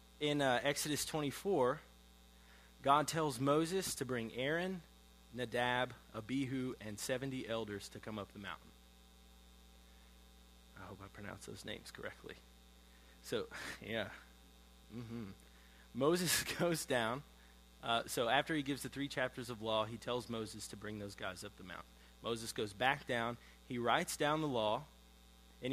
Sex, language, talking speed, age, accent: male, English, 145 wpm, 30-49, American